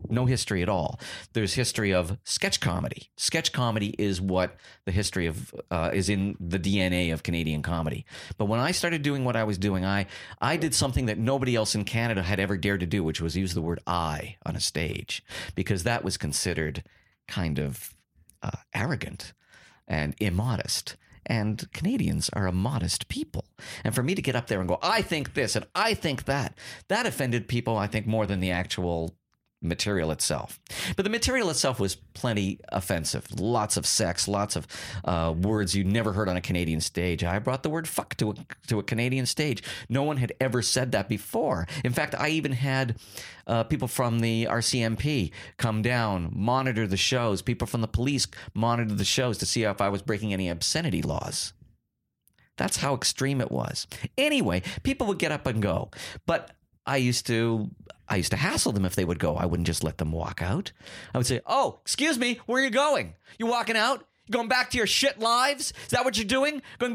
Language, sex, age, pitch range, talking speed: English, male, 50-69, 95-135 Hz, 205 wpm